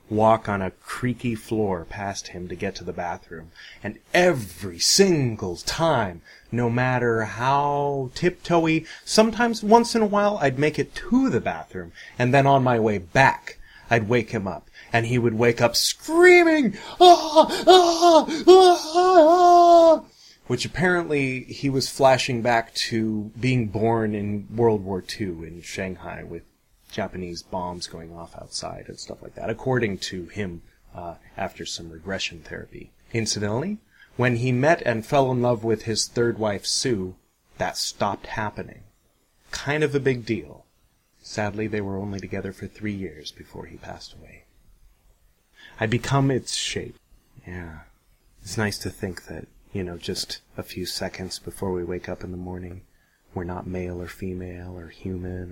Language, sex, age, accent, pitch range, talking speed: English, male, 30-49, American, 95-135 Hz, 160 wpm